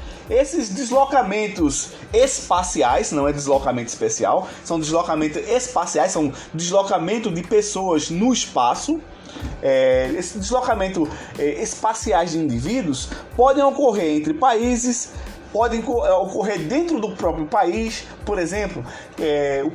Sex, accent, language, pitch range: male, Brazilian, Portuguese, 165-250 Hz